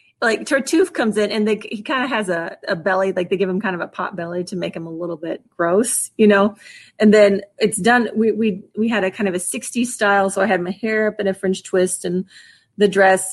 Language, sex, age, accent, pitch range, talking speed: English, female, 30-49, American, 195-235 Hz, 260 wpm